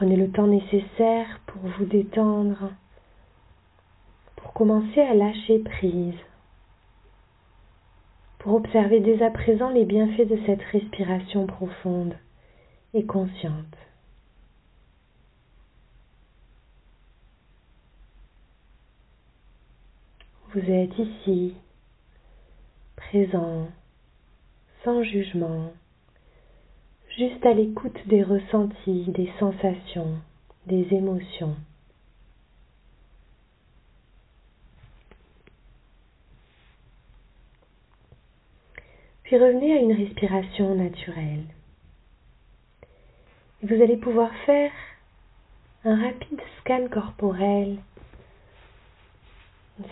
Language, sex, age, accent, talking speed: French, female, 40-59, French, 65 wpm